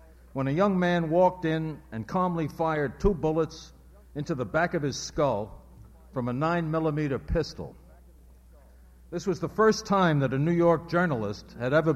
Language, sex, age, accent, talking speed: English, male, 60-79, American, 165 wpm